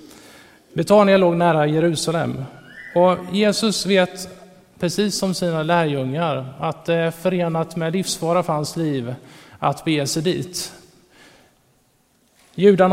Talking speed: 115 wpm